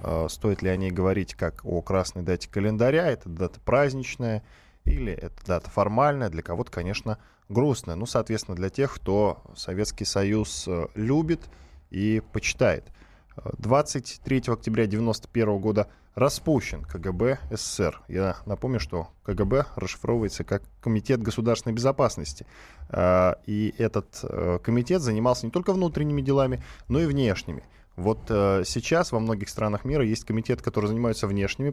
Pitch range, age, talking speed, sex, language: 100-135 Hz, 10-29, 130 wpm, male, Russian